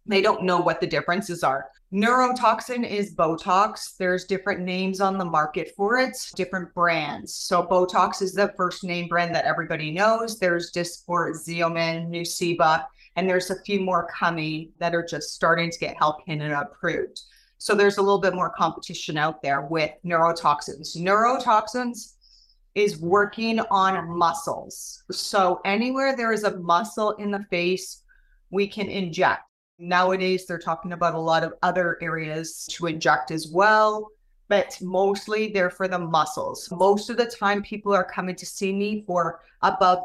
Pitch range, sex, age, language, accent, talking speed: 170-200 Hz, female, 30-49, English, American, 165 wpm